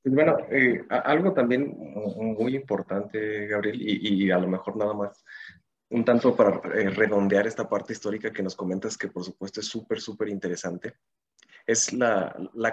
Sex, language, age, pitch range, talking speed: male, Spanish, 20-39, 100-120 Hz, 165 wpm